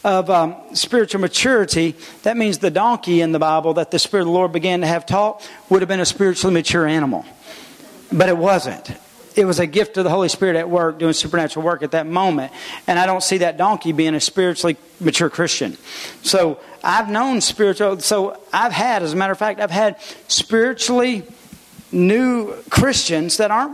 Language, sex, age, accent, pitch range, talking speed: English, male, 40-59, American, 180-220 Hz, 195 wpm